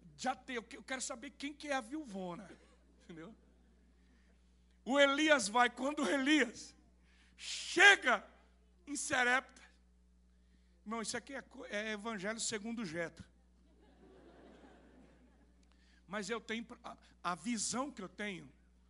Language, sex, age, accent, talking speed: Portuguese, male, 60-79, Brazilian, 115 wpm